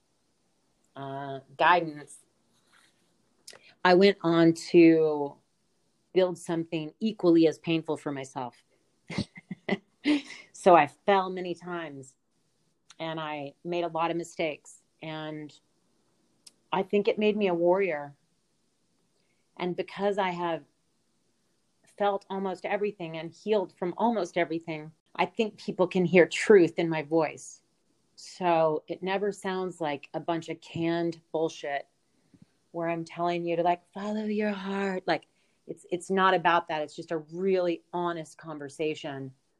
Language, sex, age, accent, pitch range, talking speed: English, female, 40-59, American, 150-180 Hz, 130 wpm